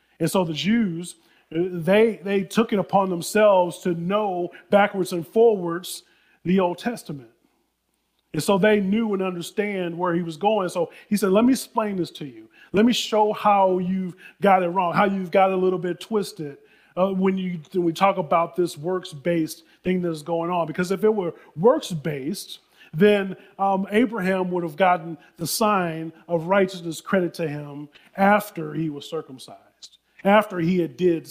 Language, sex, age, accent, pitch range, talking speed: English, male, 30-49, American, 160-195 Hz, 175 wpm